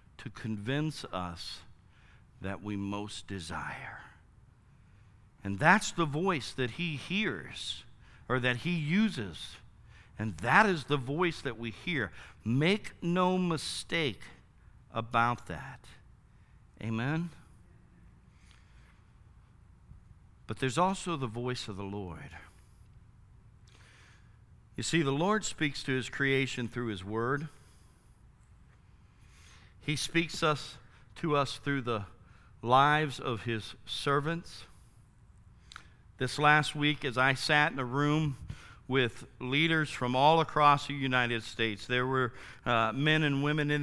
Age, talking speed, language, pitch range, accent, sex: 60-79, 120 wpm, English, 110-150 Hz, American, male